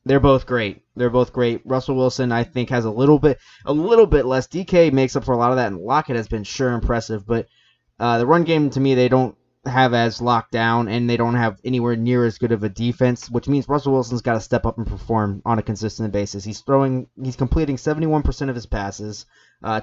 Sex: male